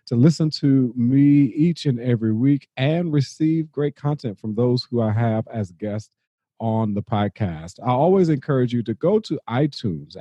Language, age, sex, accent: English, 40-59, male, American